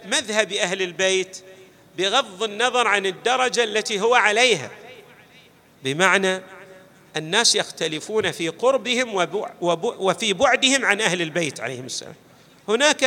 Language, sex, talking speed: Arabic, male, 105 wpm